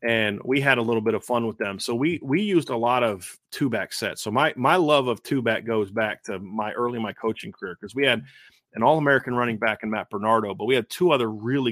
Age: 30-49